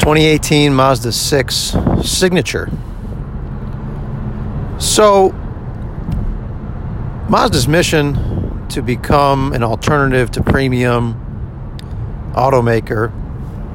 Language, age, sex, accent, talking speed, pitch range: English, 50-69, male, American, 60 wpm, 110-135 Hz